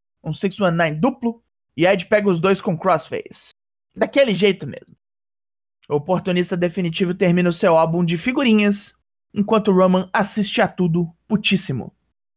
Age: 20-39